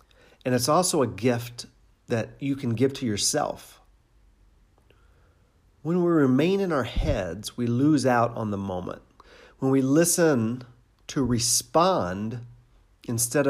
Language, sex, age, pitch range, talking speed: English, male, 50-69, 115-135 Hz, 130 wpm